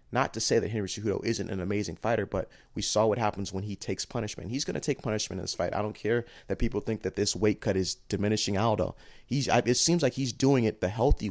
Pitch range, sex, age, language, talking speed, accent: 100-115 Hz, male, 30-49, English, 255 wpm, American